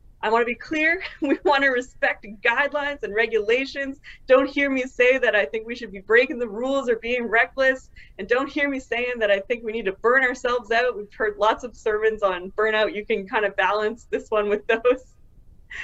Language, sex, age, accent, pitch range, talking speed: English, female, 20-39, American, 220-270 Hz, 220 wpm